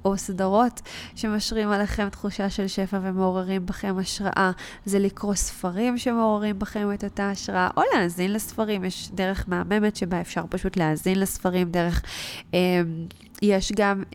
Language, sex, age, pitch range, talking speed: Hebrew, female, 20-39, 190-215 Hz, 140 wpm